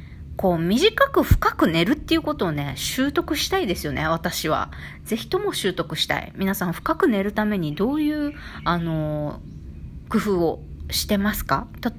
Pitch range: 150-200 Hz